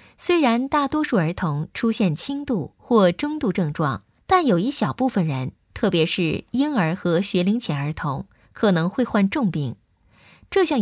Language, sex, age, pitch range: Chinese, female, 20-39, 160-235 Hz